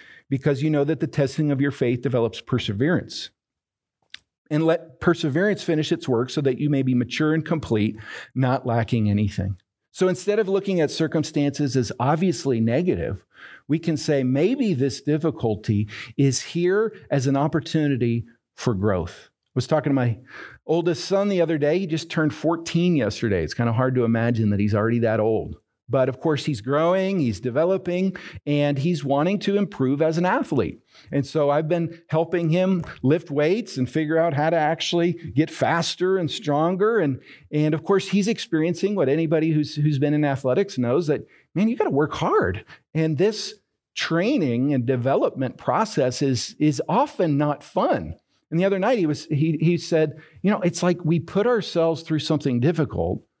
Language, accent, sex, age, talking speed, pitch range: English, American, male, 50-69, 180 wpm, 130-170 Hz